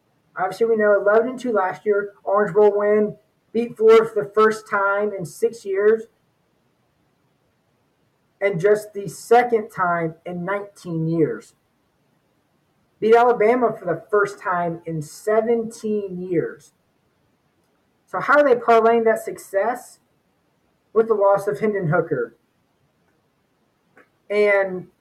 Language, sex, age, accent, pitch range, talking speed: English, male, 30-49, American, 180-230 Hz, 120 wpm